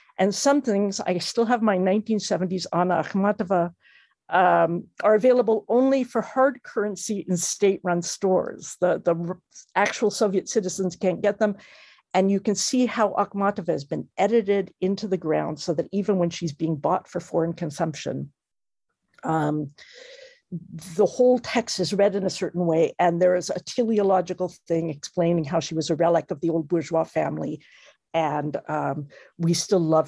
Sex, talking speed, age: female, 165 wpm, 50-69